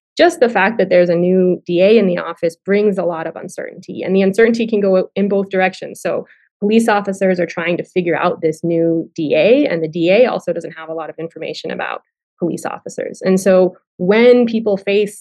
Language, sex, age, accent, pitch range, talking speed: English, female, 20-39, American, 175-210 Hz, 210 wpm